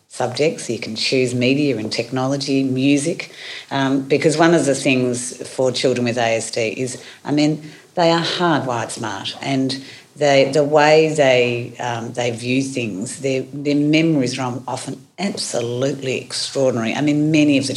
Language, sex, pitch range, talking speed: English, female, 125-150 Hz, 155 wpm